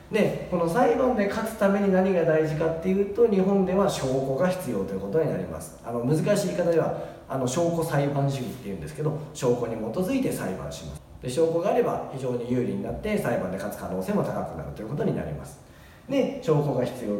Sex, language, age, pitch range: male, Japanese, 40-59, 130-200 Hz